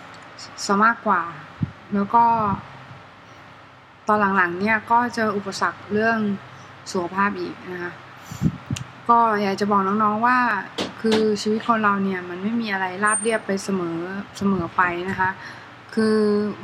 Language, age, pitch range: Thai, 20-39, 185-220 Hz